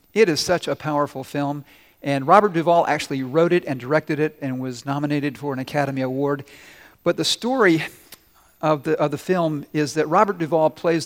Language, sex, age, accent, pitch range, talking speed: English, male, 50-69, American, 145-185 Hz, 190 wpm